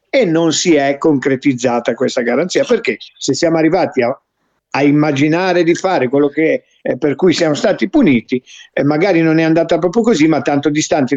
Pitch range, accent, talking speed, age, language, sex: 135-230 Hz, native, 185 wpm, 50-69, Italian, male